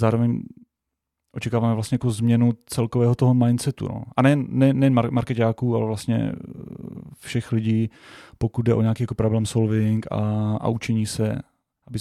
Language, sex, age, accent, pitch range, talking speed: Czech, male, 30-49, native, 110-120 Hz, 150 wpm